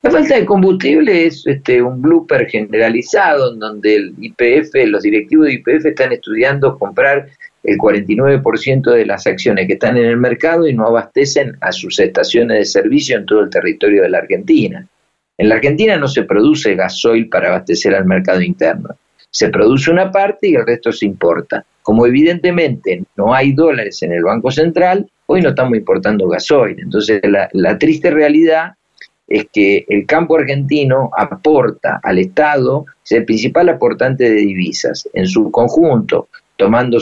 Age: 50-69